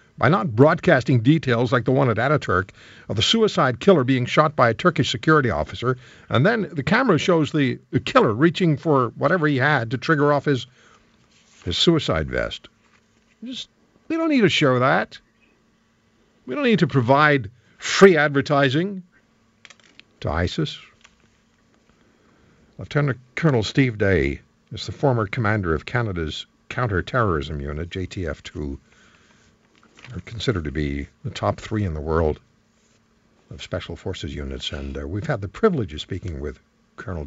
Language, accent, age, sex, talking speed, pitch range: English, American, 60-79, male, 150 wpm, 110-155 Hz